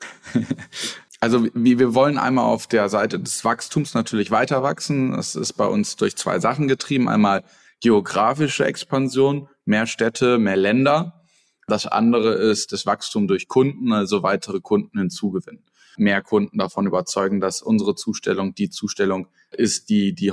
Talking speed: 150 wpm